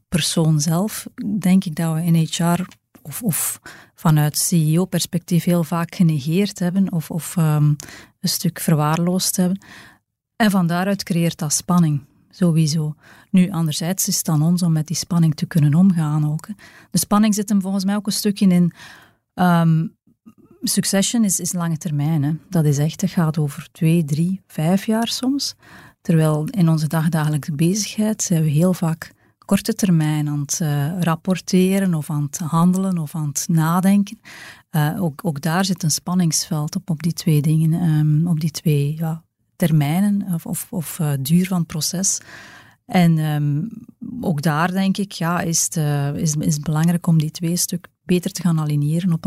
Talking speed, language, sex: 175 wpm, Dutch, female